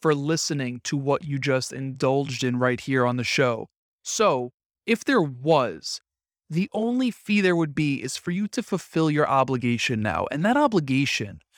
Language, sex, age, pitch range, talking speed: English, male, 30-49, 140-185 Hz, 175 wpm